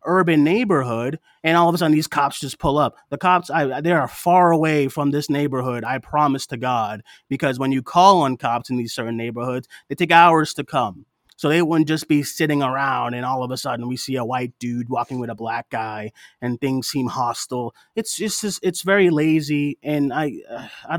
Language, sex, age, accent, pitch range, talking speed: English, male, 30-49, American, 125-155 Hz, 215 wpm